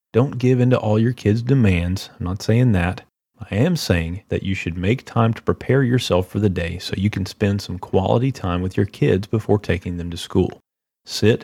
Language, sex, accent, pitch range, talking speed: English, male, American, 90-120 Hz, 220 wpm